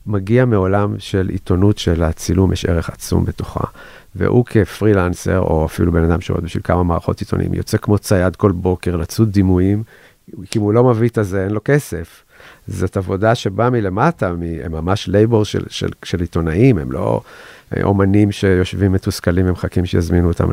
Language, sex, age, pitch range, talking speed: Hebrew, male, 50-69, 90-105 Hz, 165 wpm